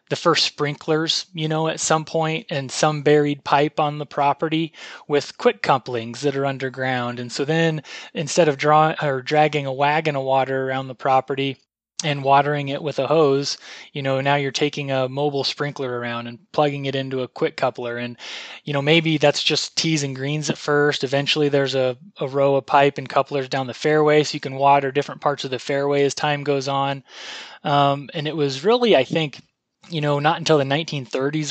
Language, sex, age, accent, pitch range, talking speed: English, male, 20-39, American, 130-150 Hz, 205 wpm